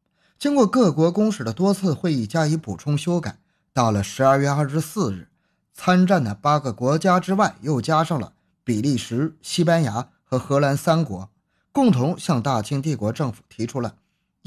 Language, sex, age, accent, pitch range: Chinese, male, 20-39, native, 130-185 Hz